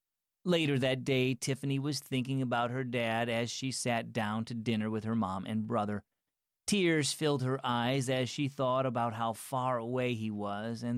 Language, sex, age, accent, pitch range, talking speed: English, male, 40-59, American, 110-150 Hz, 185 wpm